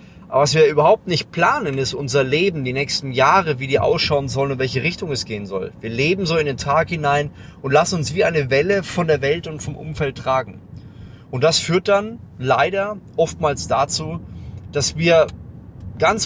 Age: 30-49